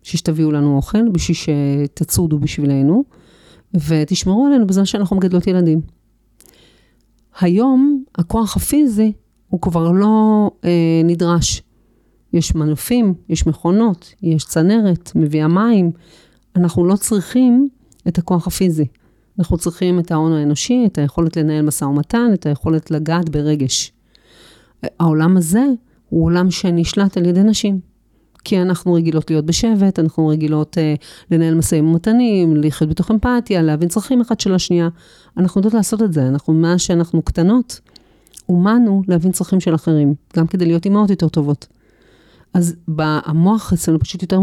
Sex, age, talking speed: female, 40-59, 135 wpm